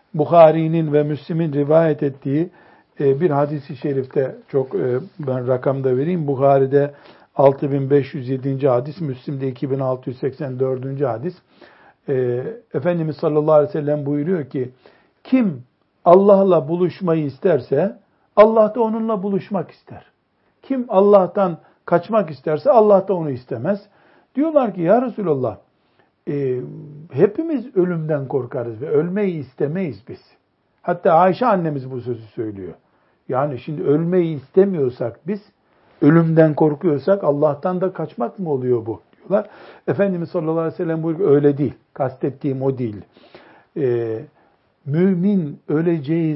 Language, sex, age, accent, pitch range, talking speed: Turkish, male, 60-79, native, 135-180 Hz, 115 wpm